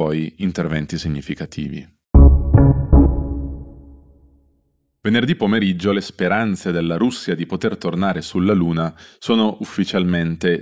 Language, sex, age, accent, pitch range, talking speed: Italian, male, 20-39, native, 85-100 Hz, 85 wpm